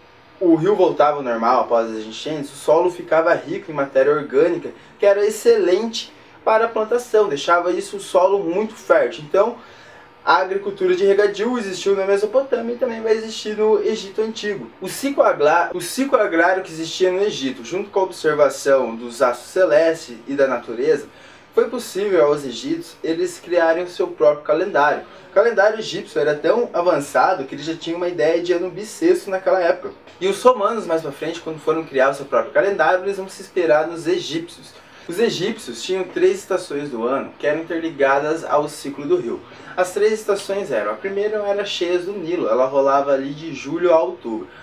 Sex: male